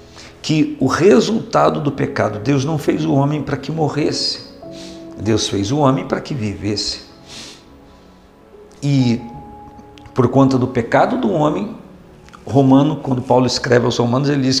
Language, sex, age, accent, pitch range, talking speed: Portuguese, male, 50-69, Brazilian, 115-145 Hz, 145 wpm